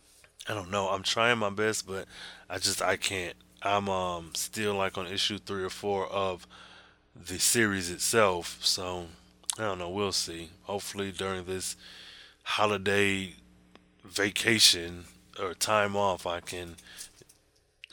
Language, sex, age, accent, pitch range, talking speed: English, male, 20-39, American, 85-100 Hz, 140 wpm